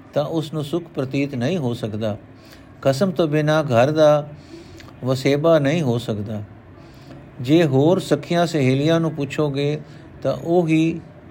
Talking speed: 140 wpm